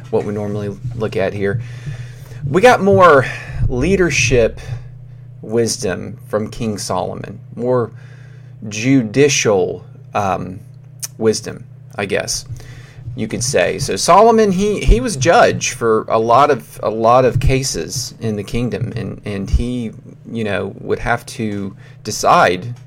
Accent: American